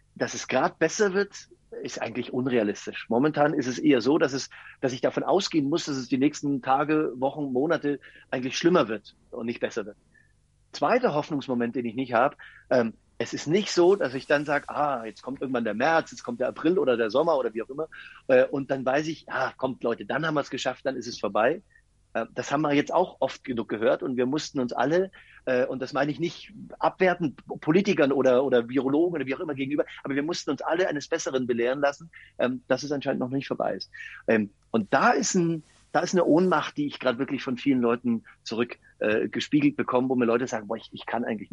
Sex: male